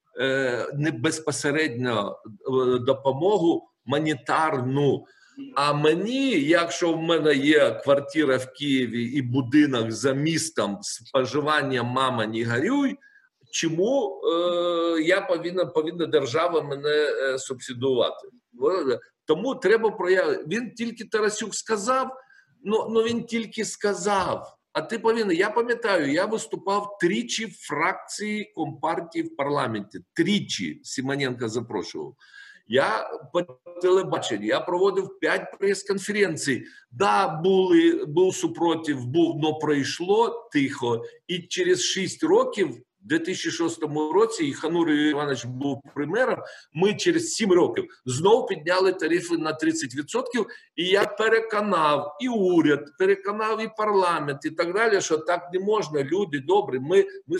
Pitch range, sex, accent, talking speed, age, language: 150-235 Hz, male, native, 115 wpm, 50-69, Ukrainian